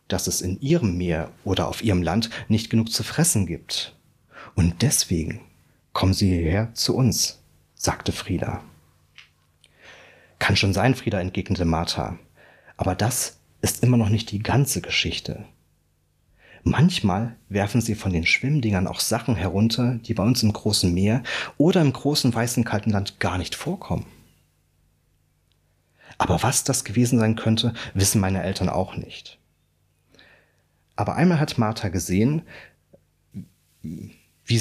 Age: 30-49